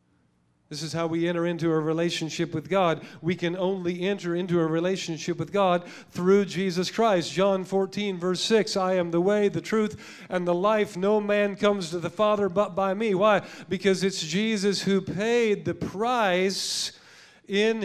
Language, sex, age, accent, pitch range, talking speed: English, male, 40-59, American, 140-195 Hz, 180 wpm